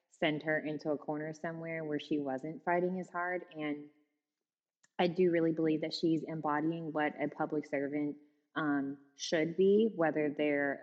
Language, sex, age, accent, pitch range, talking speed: English, female, 20-39, American, 150-185 Hz, 160 wpm